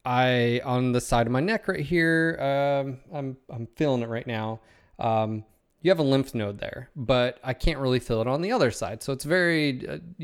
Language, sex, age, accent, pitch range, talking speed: English, male, 20-39, American, 115-145 Hz, 215 wpm